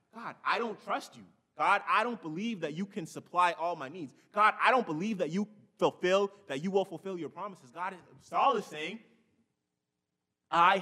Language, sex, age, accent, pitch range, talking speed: English, male, 20-39, American, 155-210 Hz, 195 wpm